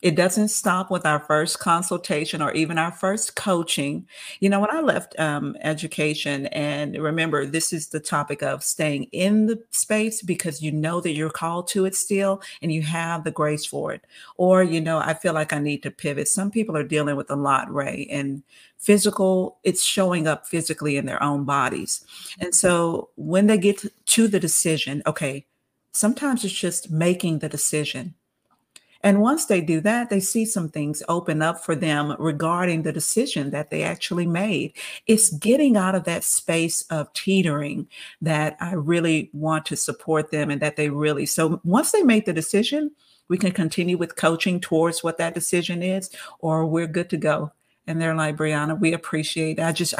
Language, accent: English, American